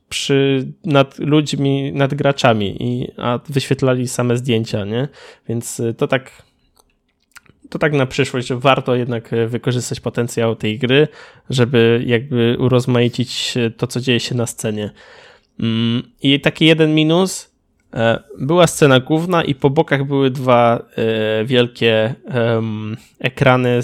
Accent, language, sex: native, Polish, male